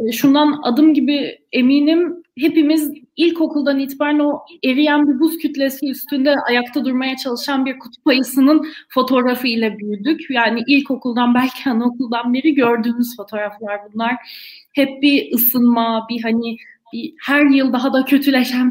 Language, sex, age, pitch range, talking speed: Turkish, female, 30-49, 240-305 Hz, 130 wpm